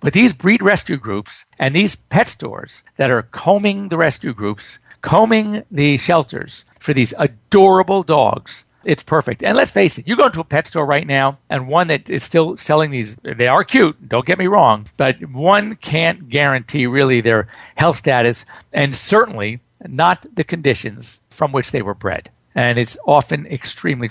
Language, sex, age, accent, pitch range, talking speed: English, male, 50-69, American, 125-170 Hz, 180 wpm